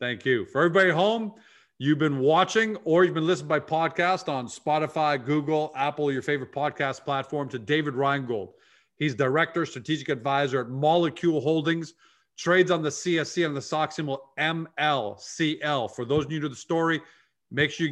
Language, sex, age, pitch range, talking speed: English, male, 40-59, 130-155 Hz, 170 wpm